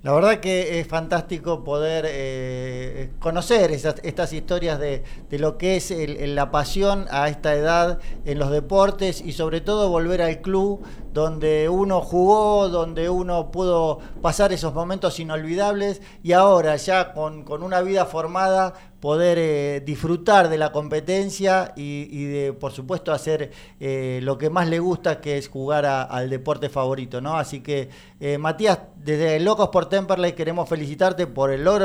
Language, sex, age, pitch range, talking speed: Spanish, male, 40-59, 145-180 Hz, 160 wpm